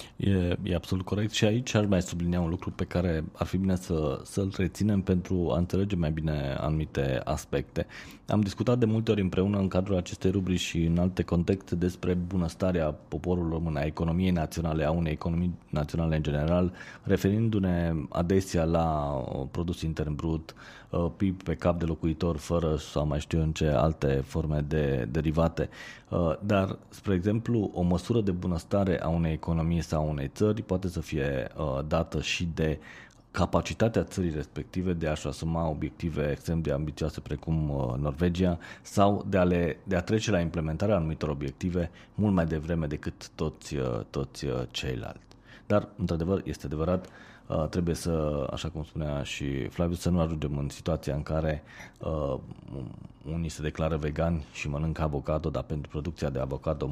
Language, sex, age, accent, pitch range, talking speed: Romanian, male, 30-49, native, 75-90 Hz, 160 wpm